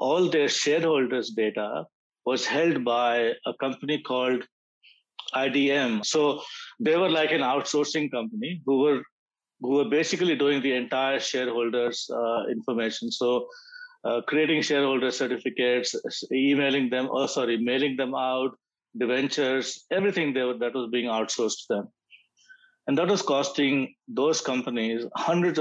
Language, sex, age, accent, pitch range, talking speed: English, male, 50-69, Indian, 125-150 Hz, 140 wpm